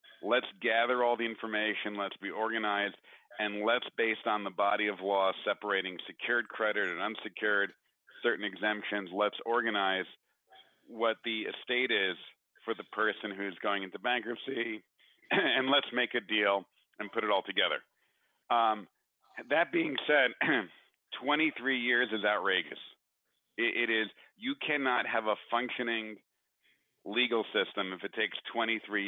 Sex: male